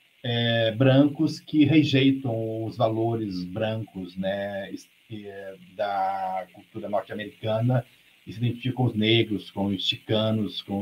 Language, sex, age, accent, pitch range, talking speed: Portuguese, male, 40-59, Brazilian, 105-135 Hz, 110 wpm